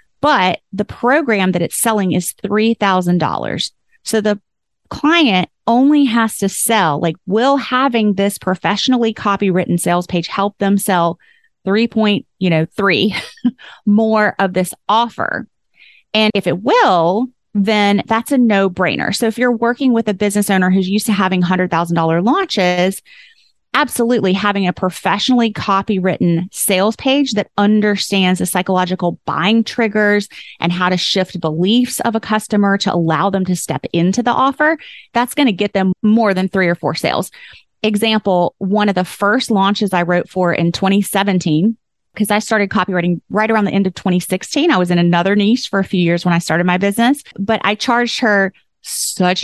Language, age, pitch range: English, 30-49, 180-220 Hz